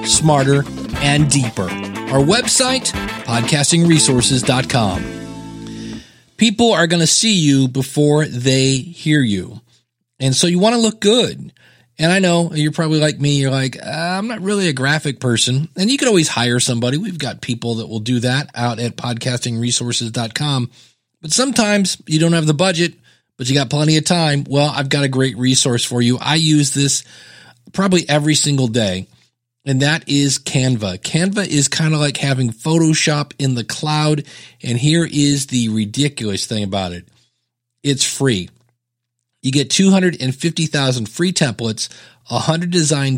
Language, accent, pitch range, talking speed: English, American, 120-160 Hz, 160 wpm